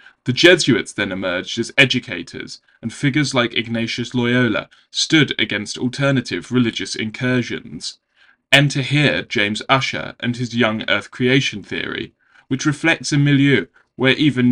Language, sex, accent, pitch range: English, male, British, 115-140 Hz